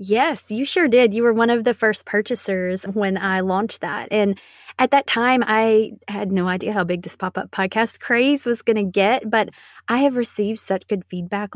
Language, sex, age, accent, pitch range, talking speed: English, female, 20-39, American, 185-225 Hz, 210 wpm